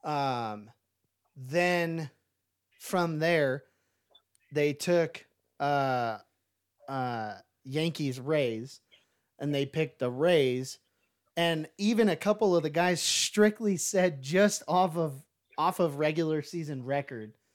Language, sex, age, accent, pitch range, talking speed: English, male, 30-49, American, 130-165 Hz, 110 wpm